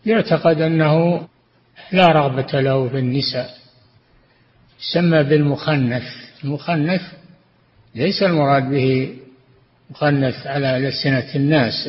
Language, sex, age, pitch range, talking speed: Arabic, male, 60-79, 130-155 Hz, 85 wpm